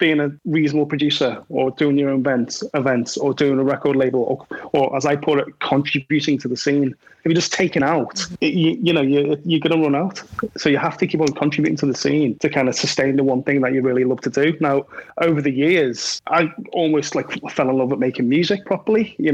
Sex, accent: male, British